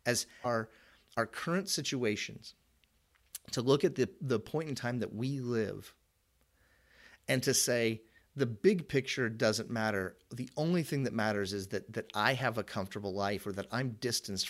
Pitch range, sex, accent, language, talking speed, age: 100-130 Hz, male, American, English, 170 wpm, 40-59